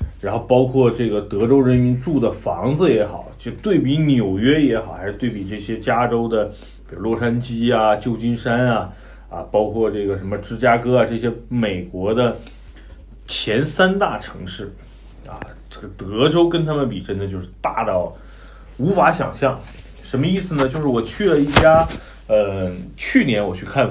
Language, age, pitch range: Chinese, 30-49, 100-135 Hz